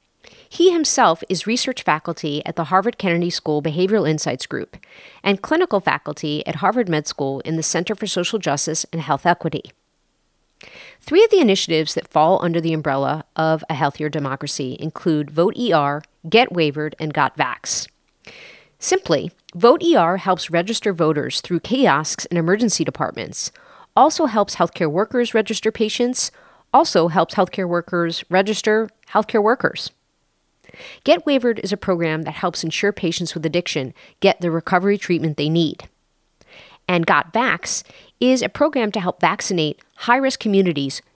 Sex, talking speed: female, 150 wpm